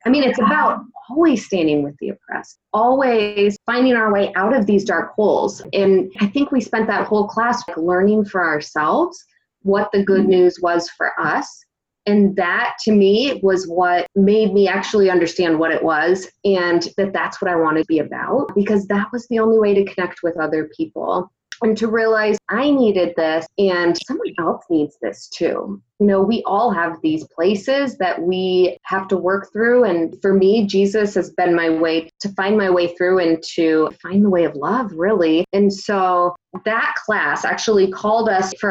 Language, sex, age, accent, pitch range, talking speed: English, female, 20-39, American, 170-215 Hz, 190 wpm